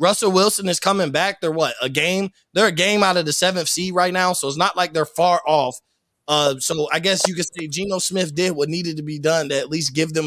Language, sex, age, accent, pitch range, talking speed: English, male, 20-39, American, 155-195 Hz, 270 wpm